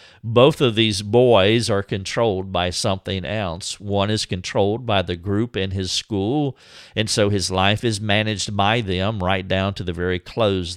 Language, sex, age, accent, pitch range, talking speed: English, male, 50-69, American, 90-115 Hz, 180 wpm